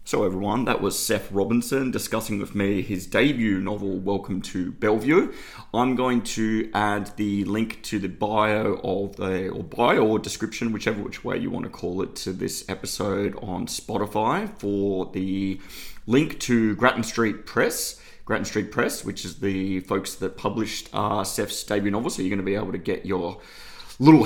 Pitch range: 100-120 Hz